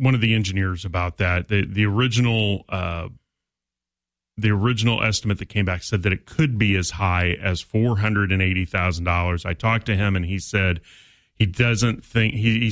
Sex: male